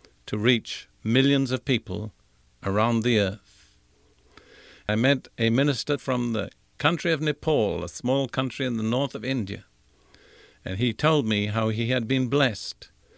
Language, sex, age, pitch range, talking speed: English, male, 50-69, 100-135 Hz, 155 wpm